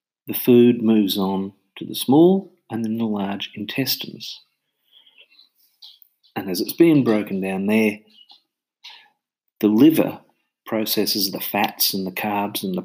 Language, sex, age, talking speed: English, male, 50-69, 135 wpm